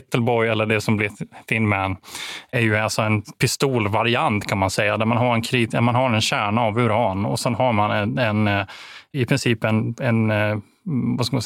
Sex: male